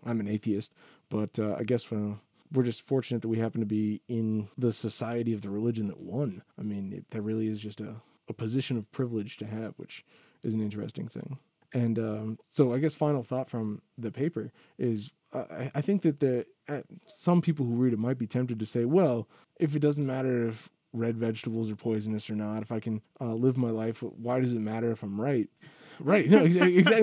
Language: English